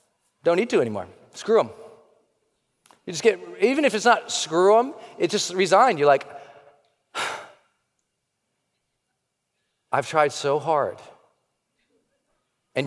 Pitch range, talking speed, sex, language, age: 125-195 Hz, 115 wpm, male, English, 40-59